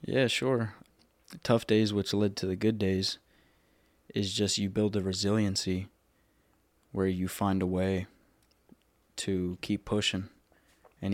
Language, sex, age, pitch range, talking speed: English, male, 20-39, 95-100 Hz, 140 wpm